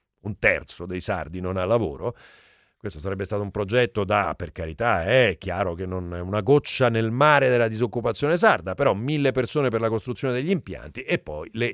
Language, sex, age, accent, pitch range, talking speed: Italian, male, 40-59, native, 105-145 Hz, 195 wpm